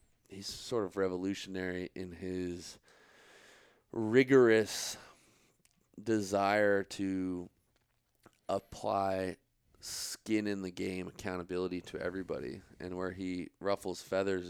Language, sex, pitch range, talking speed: English, male, 90-105 Hz, 90 wpm